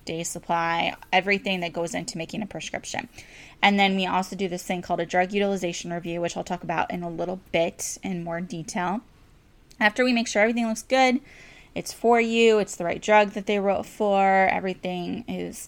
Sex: female